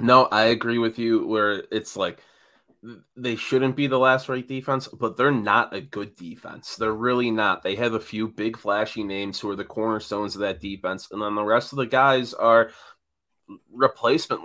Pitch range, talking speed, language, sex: 100-120 Hz, 195 wpm, English, male